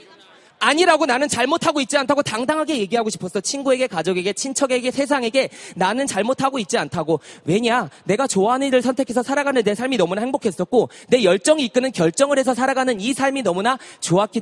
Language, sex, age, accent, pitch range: Korean, male, 20-39, native, 165-250 Hz